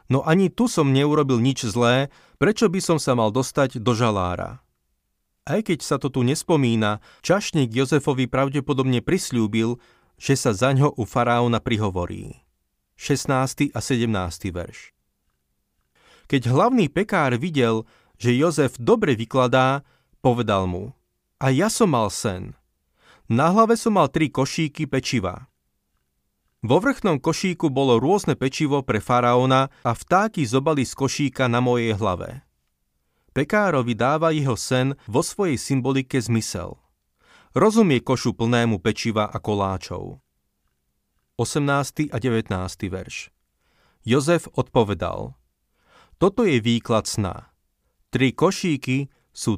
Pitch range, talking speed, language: 115-150 Hz, 120 wpm, Slovak